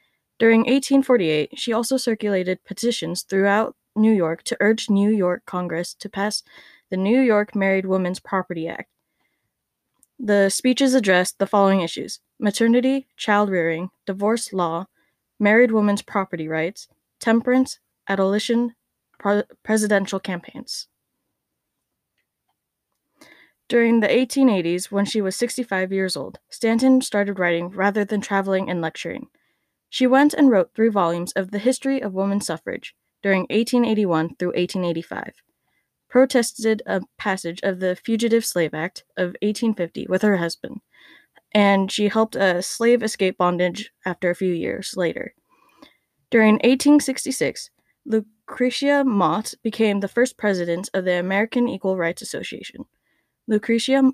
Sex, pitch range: female, 185-235 Hz